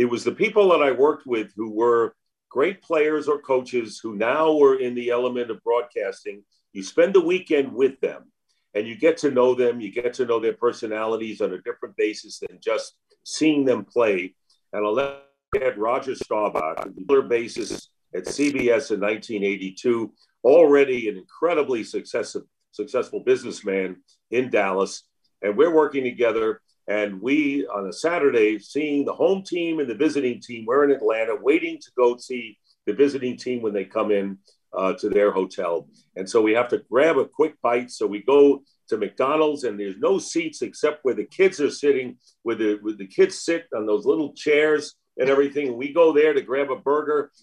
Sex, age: male, 50-69